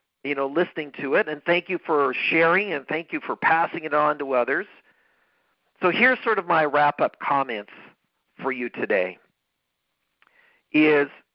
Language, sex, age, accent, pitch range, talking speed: English, male, 50-69, American, 140-180 Hz, 160 wpm